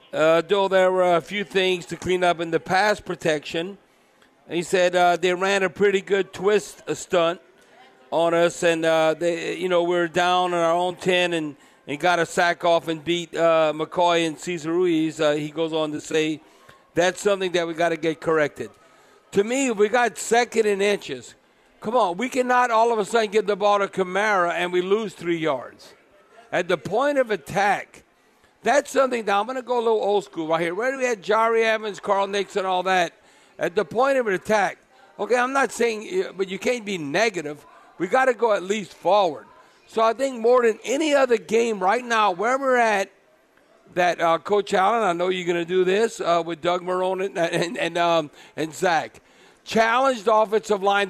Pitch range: 170-215 Hz